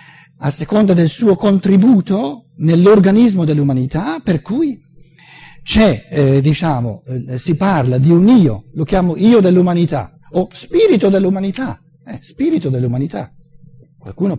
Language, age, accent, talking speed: Italian, 60-79, native, 115 wpm